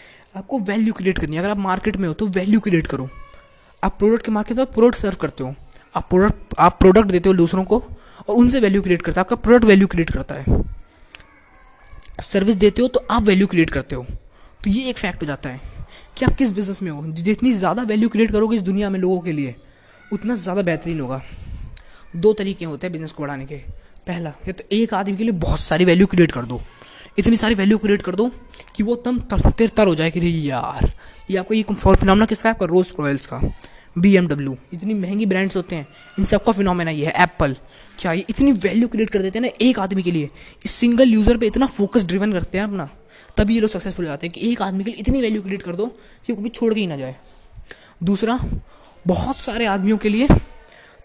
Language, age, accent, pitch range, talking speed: Hindi, 20-39, native, 170-220 Hz, 225 wpm